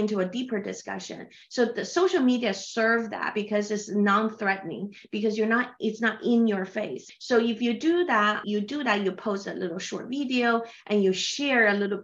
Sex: female